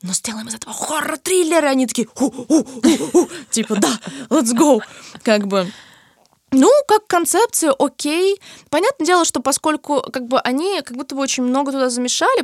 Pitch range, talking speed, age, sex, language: 215-315 Hz, 175 wpm, 20-39, female, Russian